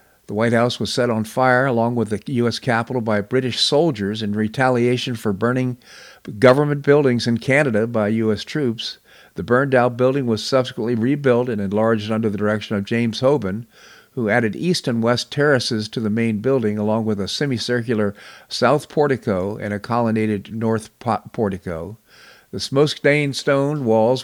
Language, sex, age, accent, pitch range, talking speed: English, male, 50-69, American, 105-125 Hz, 165 wpm